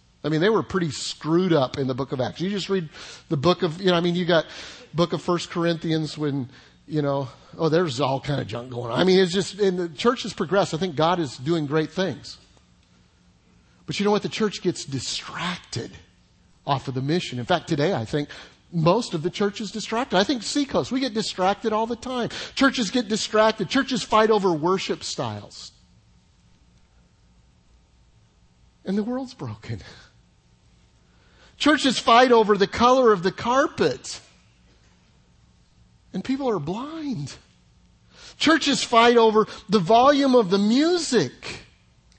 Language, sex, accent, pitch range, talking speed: English, male, American, 145-230 Hz, 170 wpm